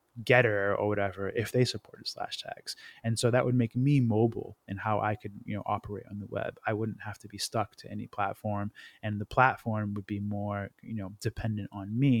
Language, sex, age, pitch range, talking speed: English, male, 20-39, 105-120 Hz, 220 wpm